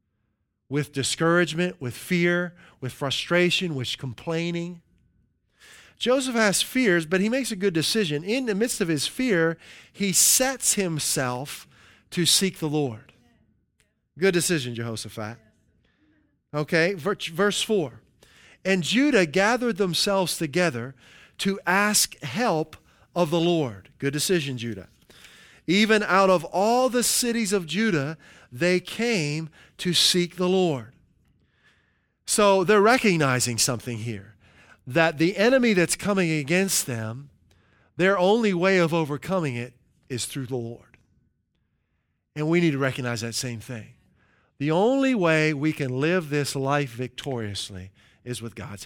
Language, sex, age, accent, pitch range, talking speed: English, male, 40-59, American, 125-185 Hz, 130 wpm